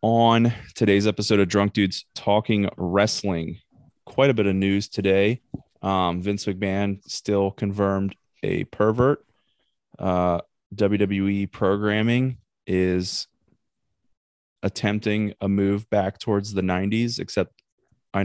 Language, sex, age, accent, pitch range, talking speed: English, male, 20-39, American, 95-115 Hz, 110 wpm